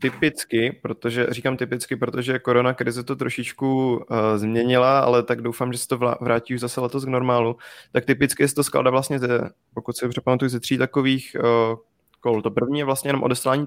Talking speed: 200 wpm